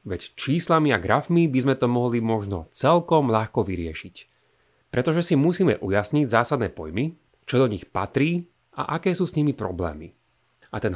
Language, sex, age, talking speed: Slovak, male, 30-49, 165 wpm